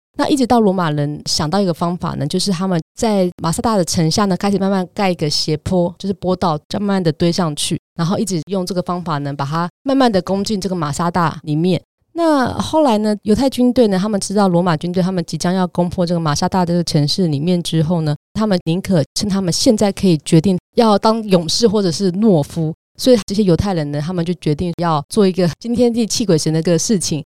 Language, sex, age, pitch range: Chinese, female, 20-39, 160-200 Hz